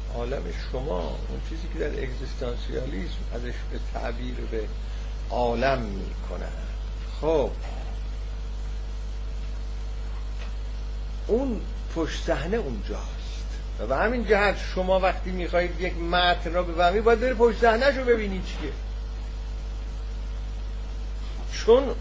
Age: 50-69